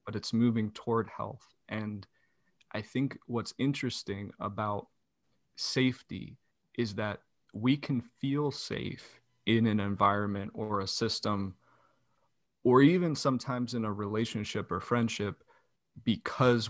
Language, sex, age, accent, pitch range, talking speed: English, male, 20-39, American, 105-125 Hz, 120 wpm